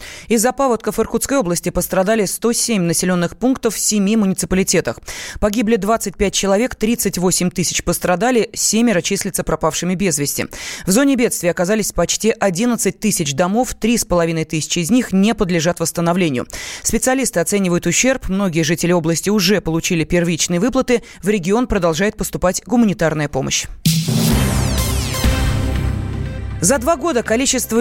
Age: 20-39